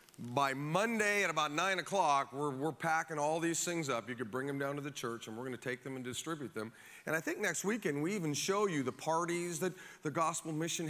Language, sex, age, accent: English, male, 40-59, American